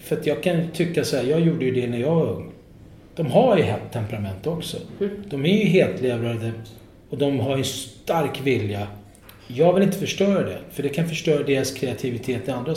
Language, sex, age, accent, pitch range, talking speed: Swedish, male, 30-49, native, 115-160 Hz, 210 wpm